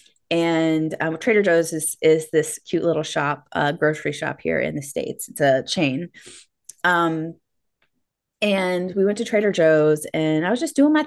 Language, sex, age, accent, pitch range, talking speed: English, female, 20-39, American, 160-205 Hz, 180 wpm